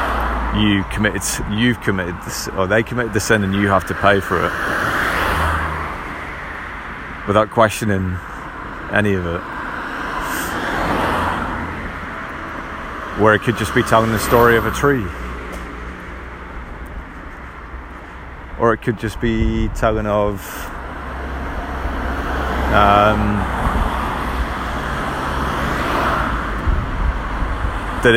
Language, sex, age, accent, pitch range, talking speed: English, male, 30-49, British, 80-105 Hz, 90 wpm